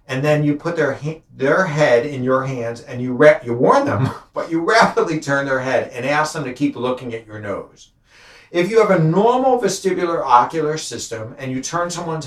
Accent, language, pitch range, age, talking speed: American, English, 130-175 Hz, 60-79, 210 wpm